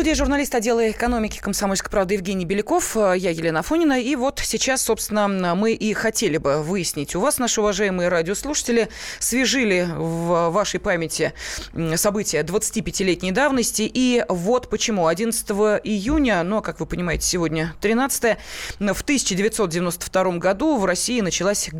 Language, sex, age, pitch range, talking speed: Russian, female, 20-39, 180-235 Hz, 135 wpm